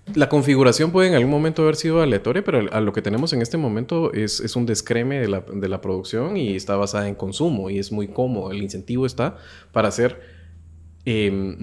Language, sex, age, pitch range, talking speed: Spanish, male, 20-39, 100-130 Hz, 205 wpm